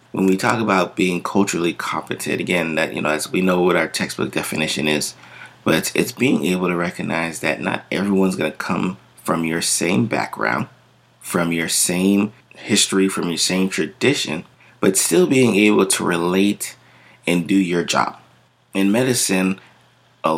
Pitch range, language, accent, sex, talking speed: 90-100 Hz, English, American, male, 170 wpm